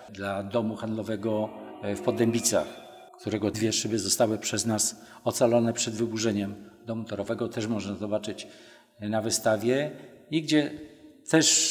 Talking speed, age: 125 wpm, 50-69